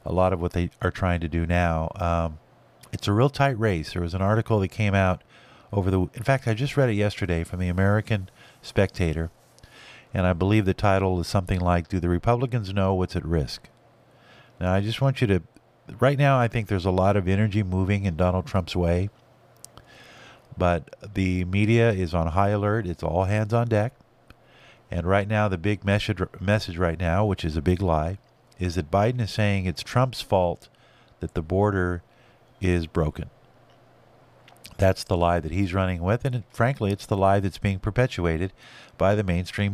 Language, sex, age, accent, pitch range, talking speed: English, male, 50-69, American, 90-115 Hz, 190 wpm